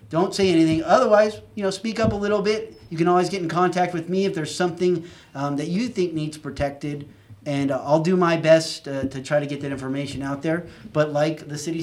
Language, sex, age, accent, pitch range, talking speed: English, male, 30-49, American, 140-185 Hz, 240 wpm